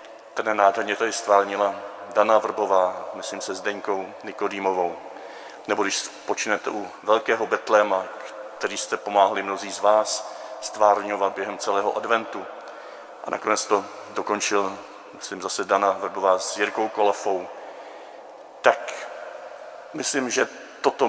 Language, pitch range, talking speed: Czech, 100-120 Hz, 120 wpm